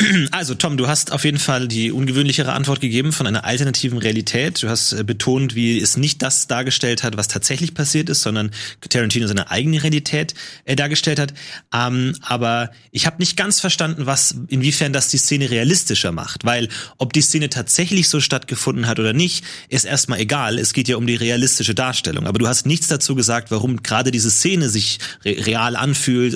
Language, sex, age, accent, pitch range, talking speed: German, male, 30-49, German, 115-145 Hz, 190 wpm